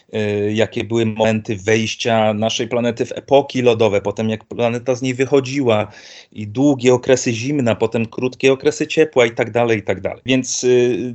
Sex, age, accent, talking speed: male, 40-59, native, 160 wpm